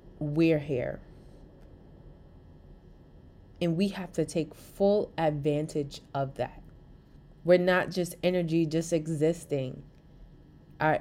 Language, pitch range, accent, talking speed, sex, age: English, 145-175 Hz, American, 100 wpm, female, 20-39